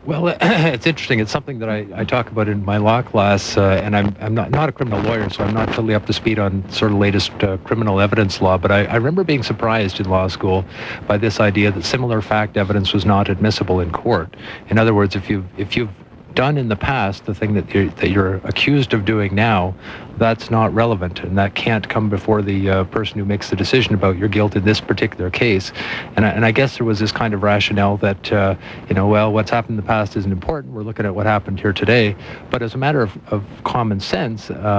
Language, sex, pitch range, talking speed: English, male, 100-115 Hz, 240 wpm